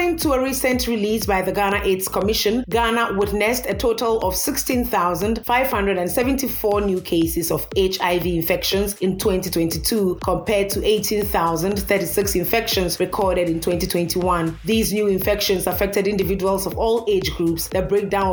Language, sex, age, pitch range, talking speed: English, female, 30-49, 180-220 Hz, 135 wpm